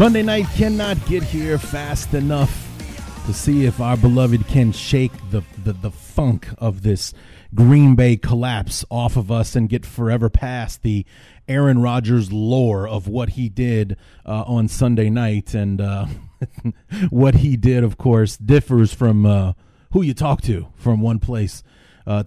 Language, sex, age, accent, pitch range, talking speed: English, male, 30-49, American, 105-130 Hz, 160 wpm